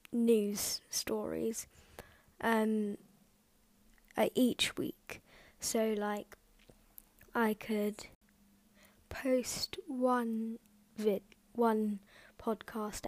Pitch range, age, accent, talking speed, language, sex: 205-230 Hz, 10-29, British, 70 wpm, English, female